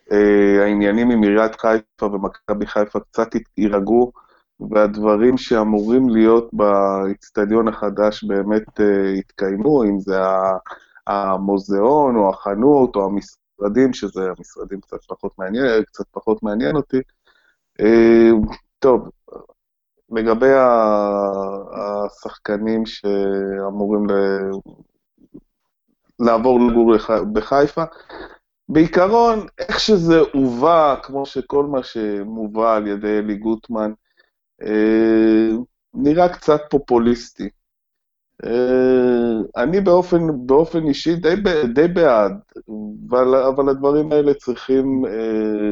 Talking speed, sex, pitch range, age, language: 90 wpm, male, 105-130 Hz, 20-39, Hebrew